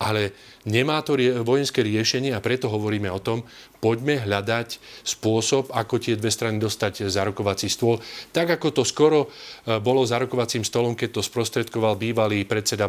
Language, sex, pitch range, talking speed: Slovak, male, 100-125 Hz, 160 wpm